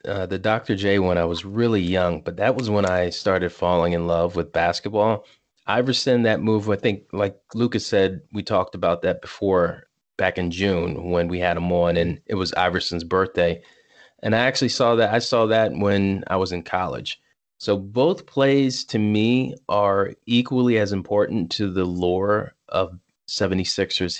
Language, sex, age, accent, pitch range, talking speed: English, male, 20-39, American, 90-115 Hz, 180 wpm